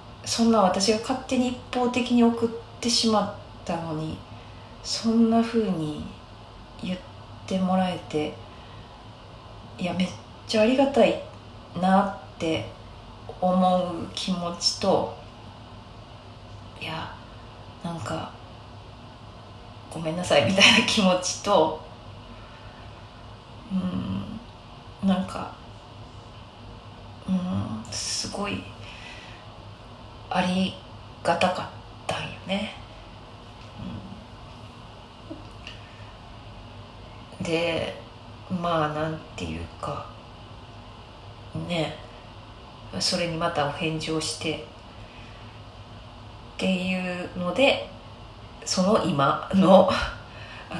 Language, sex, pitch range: Japanese, female, 110-170 Hz